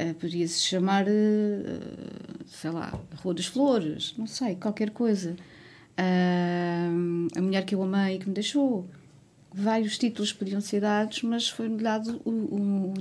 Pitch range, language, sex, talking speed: 180-220 Hz, Portuguese, female, 150 wpm